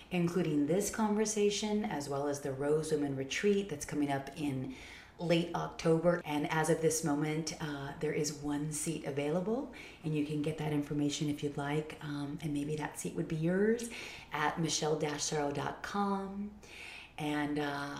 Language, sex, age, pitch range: English, female, 30-49, 145-175 Hz